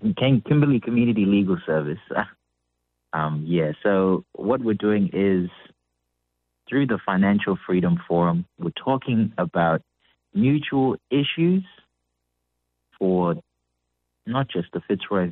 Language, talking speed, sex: English, 100 wpm, male